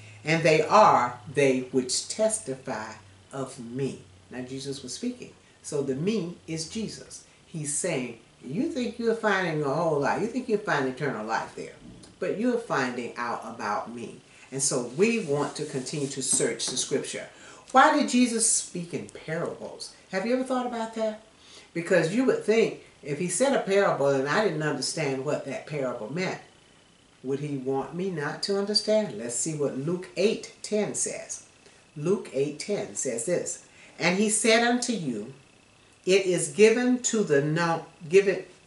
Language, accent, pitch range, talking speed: English, American, 135-210 Hz, 170 wpm